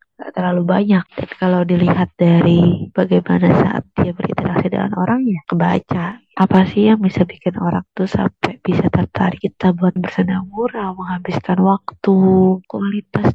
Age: 20-39